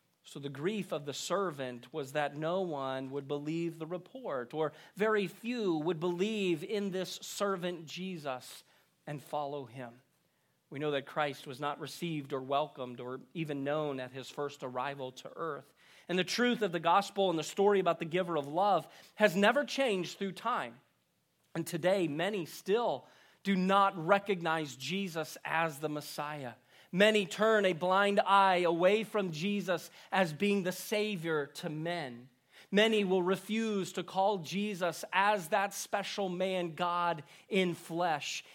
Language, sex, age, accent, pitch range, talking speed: English, male, 40-59, American, 145-190 Hz, 155 wpm